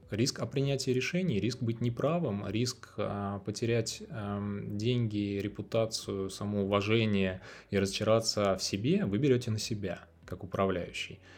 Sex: male